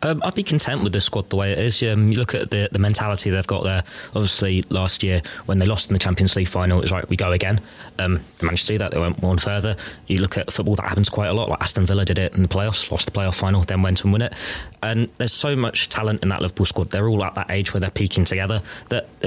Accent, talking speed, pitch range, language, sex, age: British, 280 wpm, 90-105 Hz, English, male, 20-39